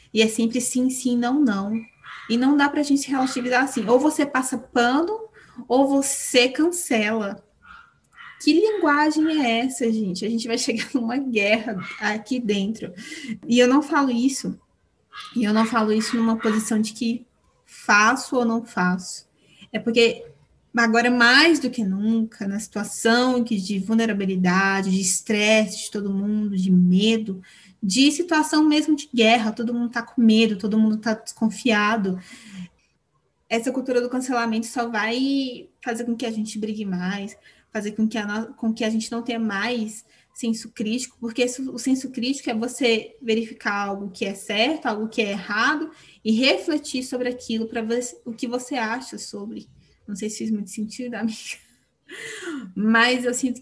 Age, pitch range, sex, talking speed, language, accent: 20-39, 215-255 Hz, female, 165 wpm, Portuguese, Brazilian